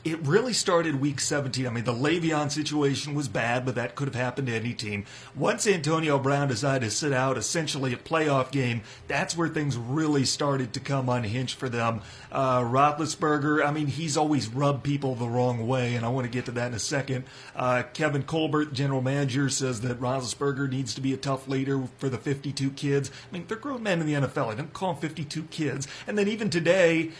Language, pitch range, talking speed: English, 130-160 Hz, 215 wpm